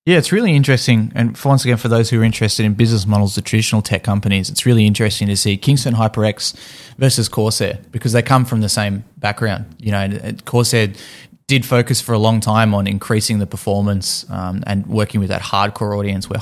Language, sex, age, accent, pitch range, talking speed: English, male, 20-39, Australian, 100-115 Hz, 205 wpm